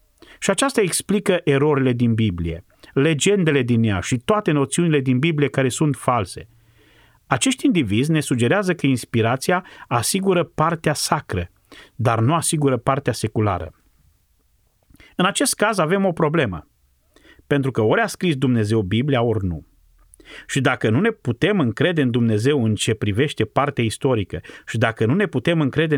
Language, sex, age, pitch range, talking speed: Romanian, male, 30-49, 110-150 Hz, 150 wpm